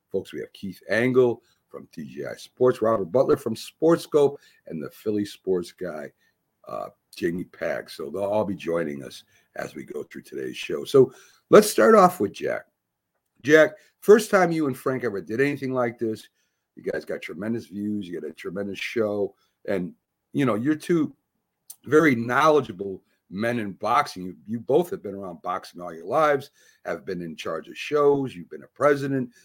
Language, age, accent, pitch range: English, 60-79, American, 110-155 Hz